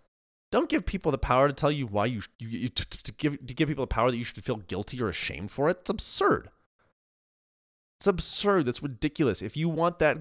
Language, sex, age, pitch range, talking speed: English, male, 30-49, 100-135 Hz, 235 wpm